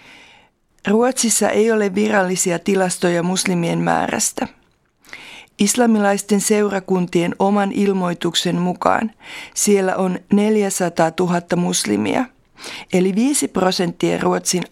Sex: female